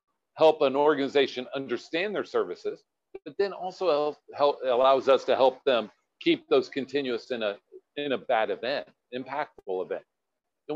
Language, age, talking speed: English, 50-69, 140 wpm